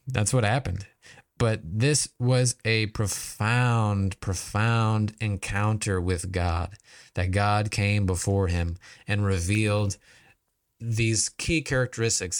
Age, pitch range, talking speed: 20-39, 100-135 Hz, 105 wpm